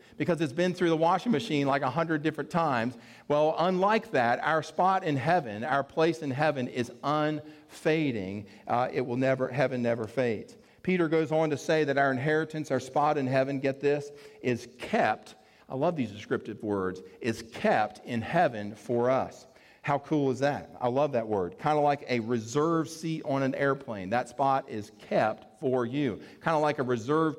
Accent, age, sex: American, 40-59, male